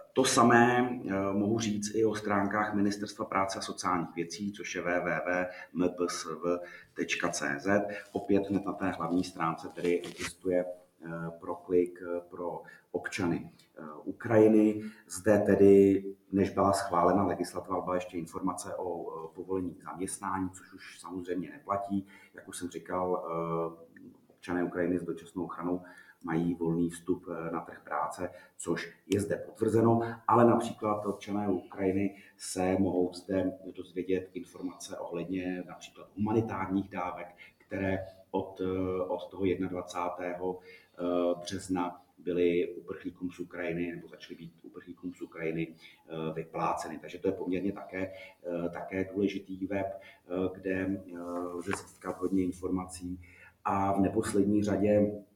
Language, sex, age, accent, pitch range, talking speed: Czech, male, 30-49, native, 90-100 Hz, 125 wpm